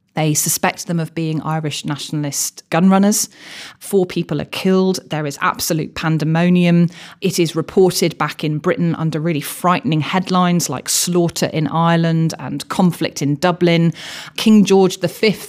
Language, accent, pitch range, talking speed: English, British, 155-185 Hz, 145 wpm